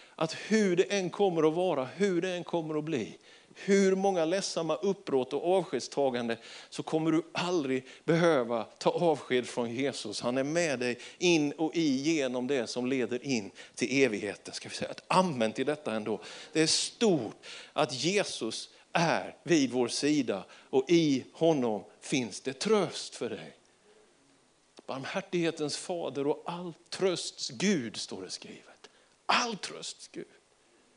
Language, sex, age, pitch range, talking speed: Swedish, male, 50-69, 140-190 Hz, 145 wpm